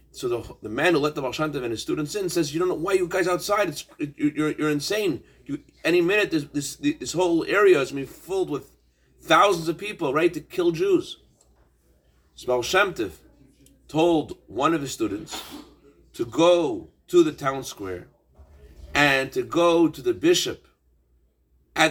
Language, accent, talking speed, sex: English, American, 185 wpm, male